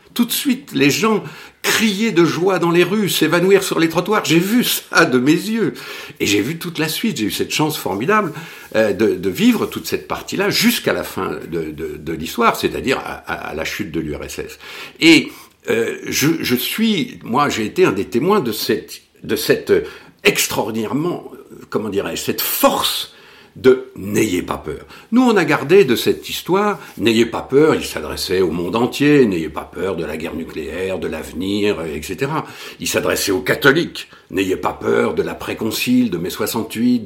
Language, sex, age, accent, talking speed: French, male, 60-79, French, 185 wpm